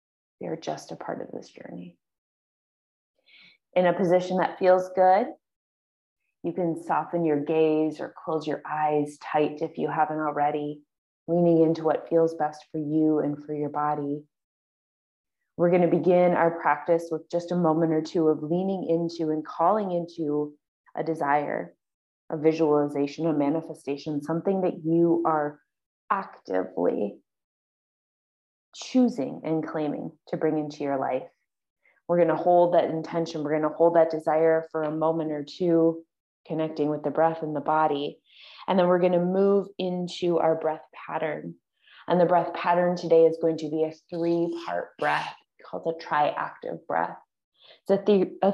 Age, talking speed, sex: 20-39, 160 wpm, female